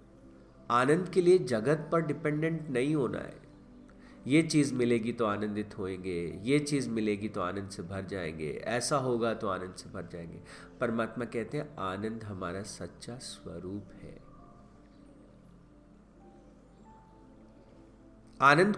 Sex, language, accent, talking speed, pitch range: male, Hindi, native, 125 wpm, 95-155 Hz